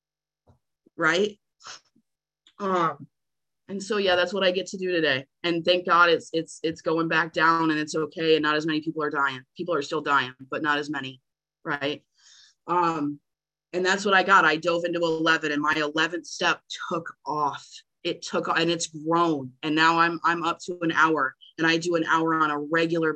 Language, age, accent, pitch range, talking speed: English, 30-49, American, 155-180 Hz, 200 wpm